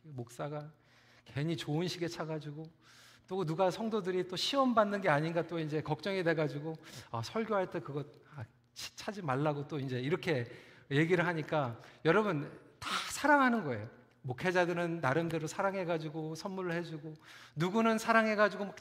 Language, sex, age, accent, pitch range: Korean, male, 40-59, native, 150-245 Hz